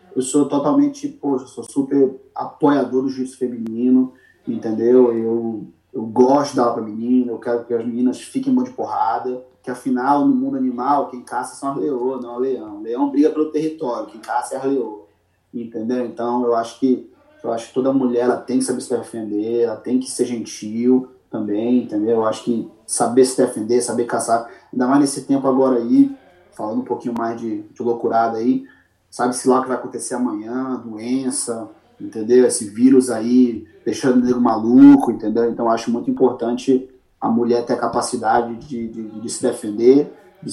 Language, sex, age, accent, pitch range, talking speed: Portuguese, male, 30-49, Brazilian, 115-135 Hz, 190 wpm